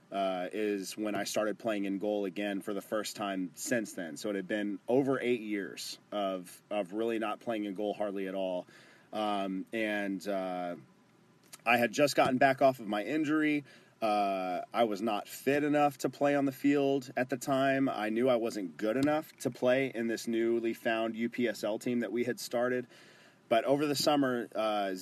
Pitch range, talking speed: 100-120 Hz, 195 wpm